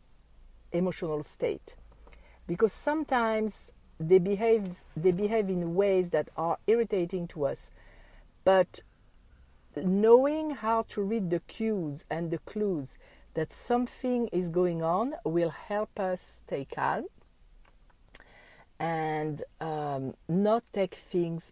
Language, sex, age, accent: English, female, 50-69, French